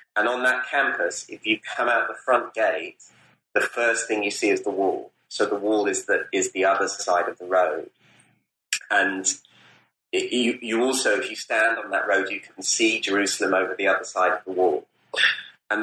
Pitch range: 95-125 Hz